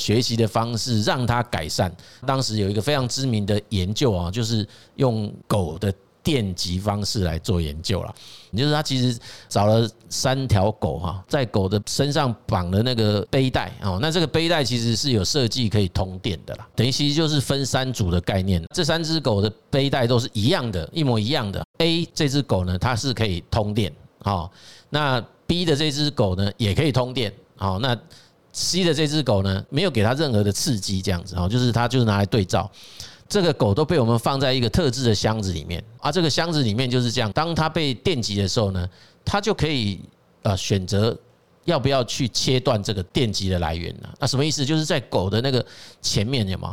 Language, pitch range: Chinese, 100-135 Hz